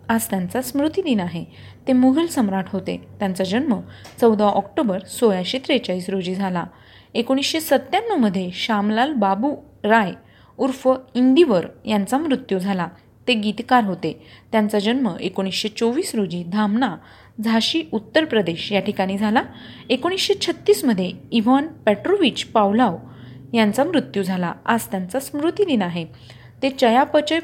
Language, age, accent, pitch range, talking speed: Marathi, 30-49, native, 200-265 Hz, 120 wpm